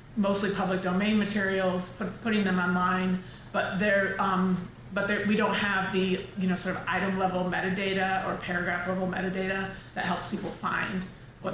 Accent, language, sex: American, English, female